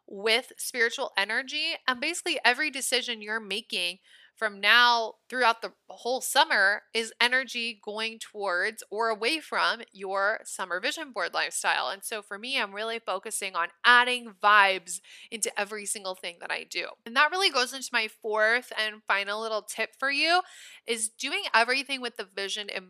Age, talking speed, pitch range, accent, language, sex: 20-39, 170 wpm, 205-250 Hz, American, English, female